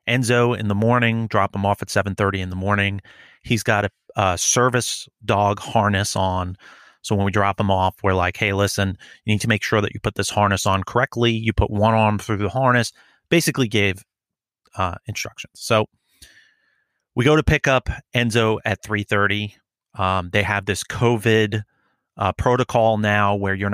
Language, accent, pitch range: English, American, 100-115 Hz